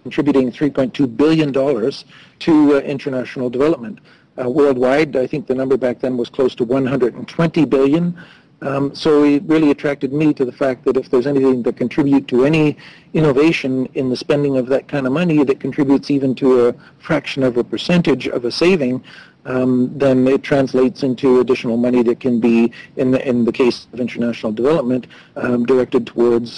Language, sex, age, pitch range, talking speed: English, male, 40-59, 120-140 Hz, 180 wpm